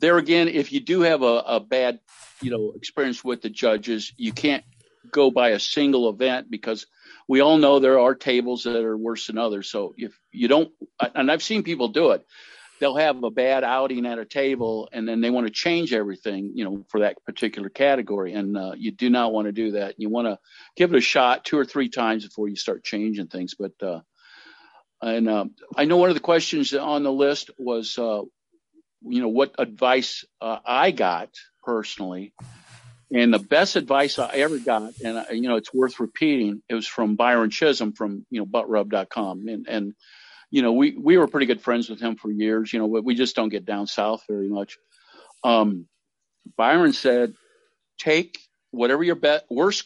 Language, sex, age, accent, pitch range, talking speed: English, male, 50-69, American, 110-140 Hz, 205 wpm